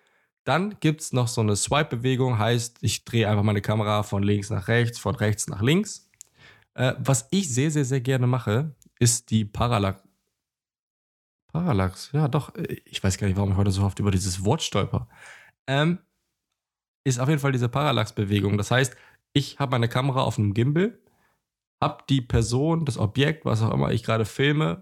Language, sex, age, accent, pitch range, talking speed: German, male, 20-39, German, 110-140 Hz, 180 wpm